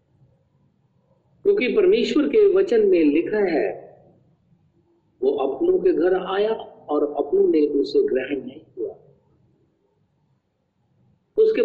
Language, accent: Hindi, native